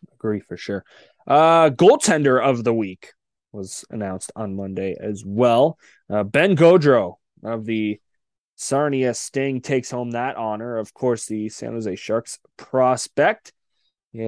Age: 20-39